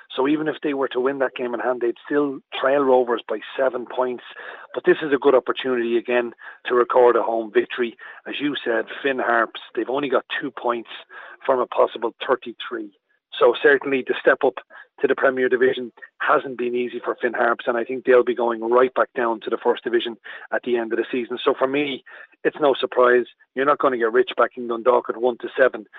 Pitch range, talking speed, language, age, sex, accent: 125-155 Hz, 225 wpm, English, 40-59, male, Irish